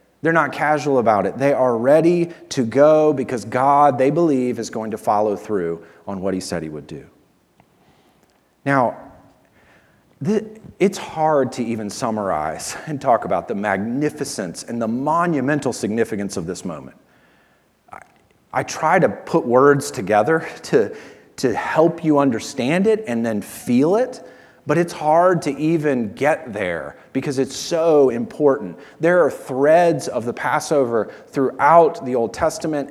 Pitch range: 110-160 Hz